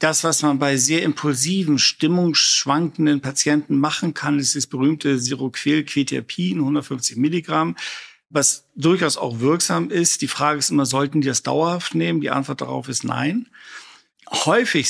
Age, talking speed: 50-69, 145 wpm